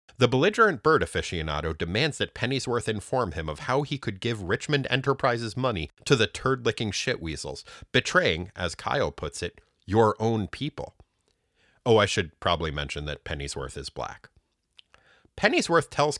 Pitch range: 90-140 Hz